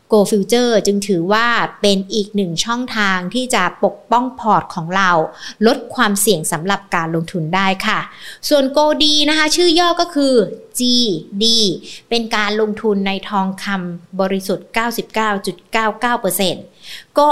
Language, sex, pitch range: Thai, female, 200-255 Hz